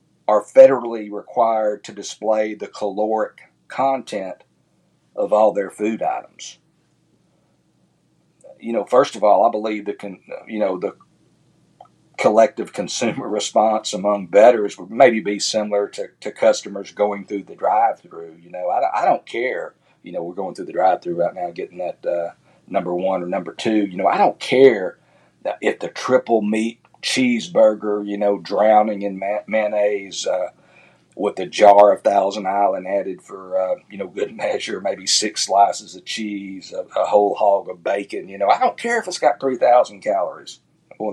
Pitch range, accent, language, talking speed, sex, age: 100-110 Hz, American, English, 170 wpm, male, 50-69